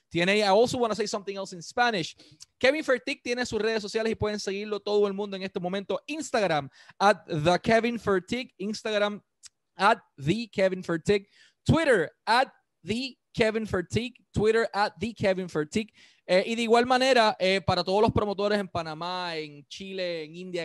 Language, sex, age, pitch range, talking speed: Spanish, male, 20-39, 175-210 Hz, 180 wpm